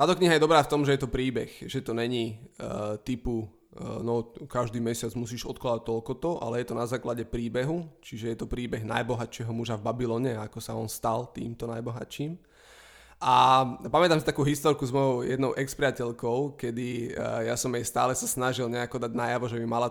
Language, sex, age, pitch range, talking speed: Slovak, male, 20-39, 120-140 Hz, 200 wpm